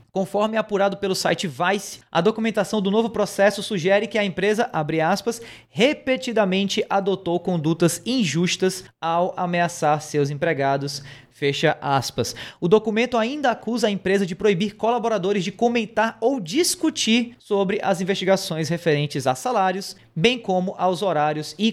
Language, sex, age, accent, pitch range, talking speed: Portuguese, male, 20-39, Brazilian, 160-210 Hz, 140 wpm